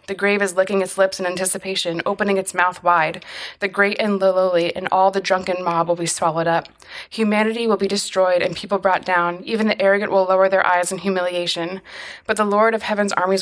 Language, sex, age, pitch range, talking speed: English, female, 20-39, 180-205 Hz, 215 wpm